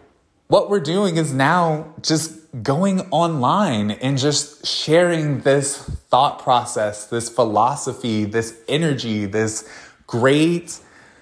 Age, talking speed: 20-39, 105 wpm